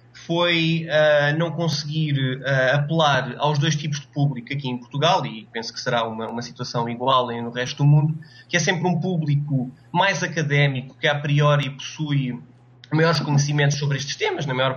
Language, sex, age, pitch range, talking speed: Portuguese, male, 20-39, 130-155 Hz, 170 wpm